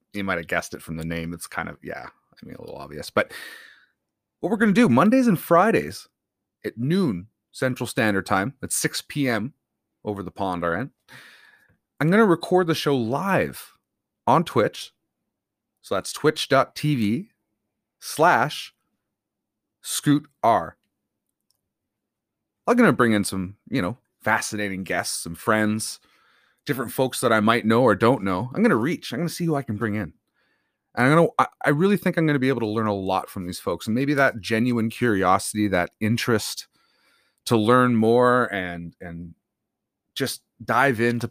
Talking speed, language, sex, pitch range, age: 175 wpm, English, male, 105-150 Hz, 30-49